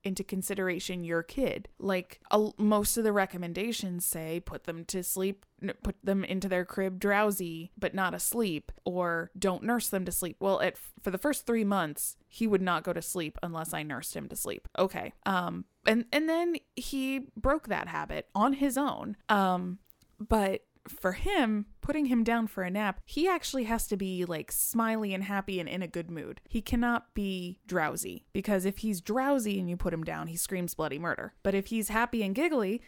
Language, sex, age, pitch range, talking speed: English, female, 20-39, 180-220 Hz, 195 wpm